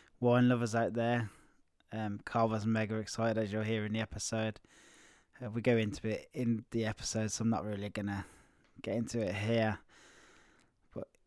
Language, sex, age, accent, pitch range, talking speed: English, male, 20-39, British, 110-120 Hz, 170 wpm